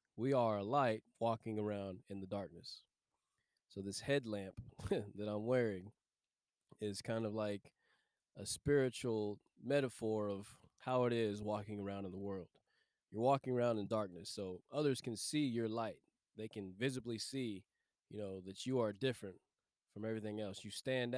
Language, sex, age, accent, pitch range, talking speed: English, male, 20-39, American, 100-120 Hz, 160 wpm